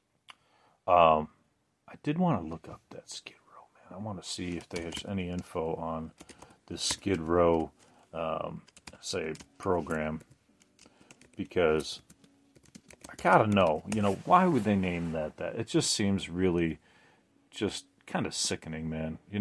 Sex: male